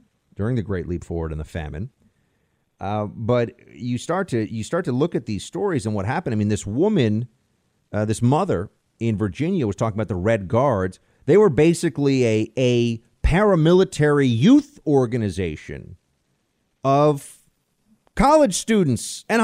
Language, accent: English, American